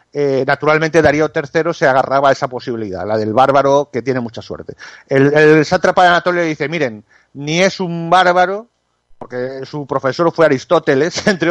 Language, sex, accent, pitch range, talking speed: Spanish, male, Spanish, 145-190 Hz, 170 wpm